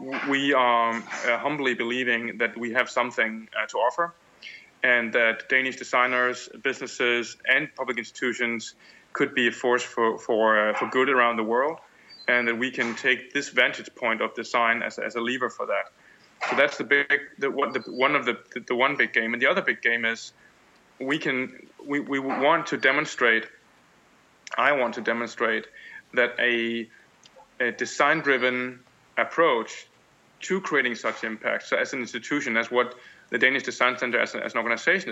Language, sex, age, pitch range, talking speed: English, male, 20-39, 115-130 Hz, 175 wpm